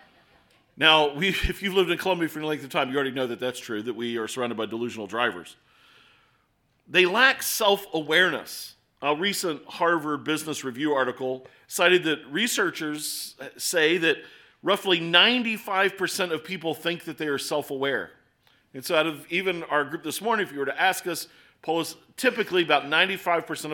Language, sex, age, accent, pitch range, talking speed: English, male, 40-59, American, 135-175 Hz, 165 wpm